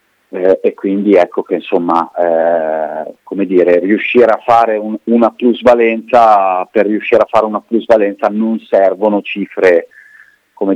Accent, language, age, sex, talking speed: native, Italian, 30-49, male, 140 wpm